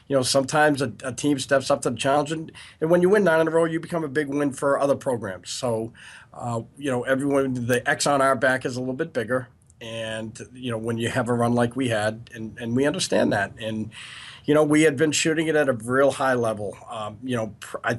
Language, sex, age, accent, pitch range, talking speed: English, male, 40-59, American, 110-140 Hz, 255 wpm